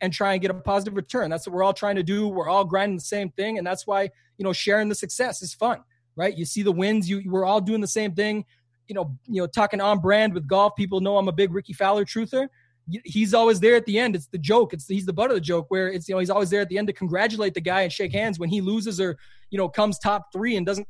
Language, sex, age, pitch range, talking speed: English, male, 20-39, 185-210 Hz, 300 wpm